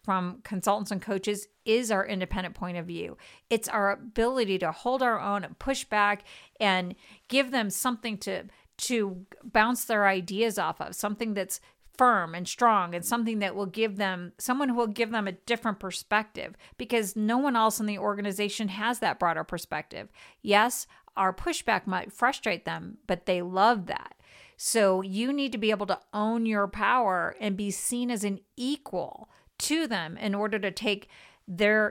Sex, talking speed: female, 175 wpm